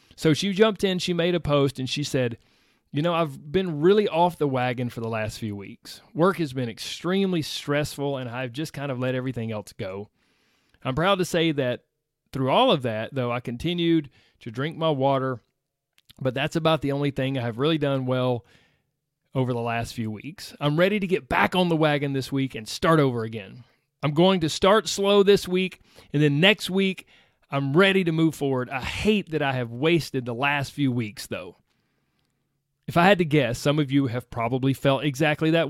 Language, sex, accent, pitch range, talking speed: English, male, American, 130-170 Hz, 210 wpm